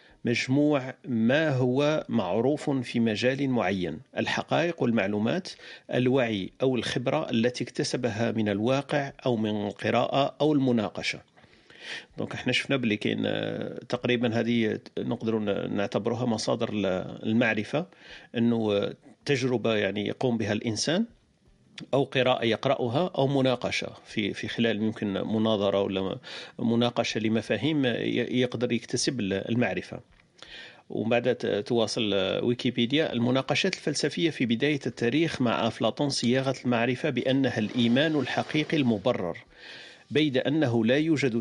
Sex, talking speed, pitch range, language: male, 105 wpm, 115-140 Hz, Arabic